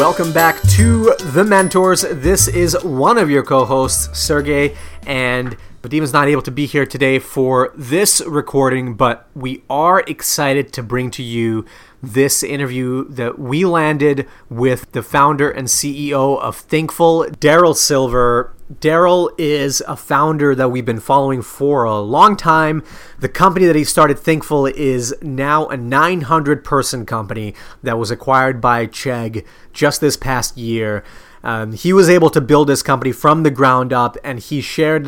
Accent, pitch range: American, 125-155 Hz